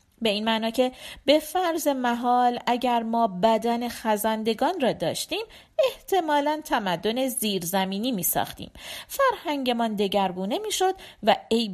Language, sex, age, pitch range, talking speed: Persian, female, 40-59, 200-280 Hz, 115 wpm